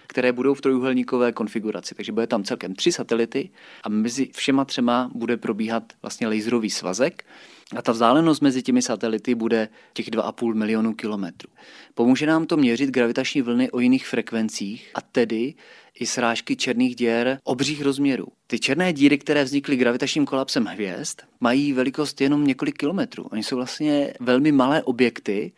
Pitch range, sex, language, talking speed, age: 120-140 Hz, male, Czech, 155 wpm, 30-49